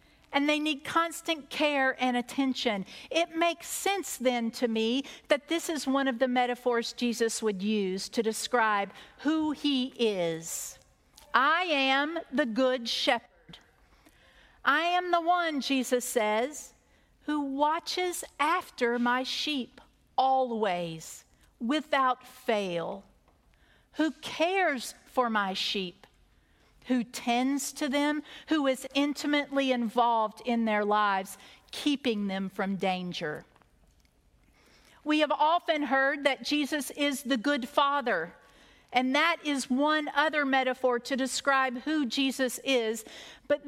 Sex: female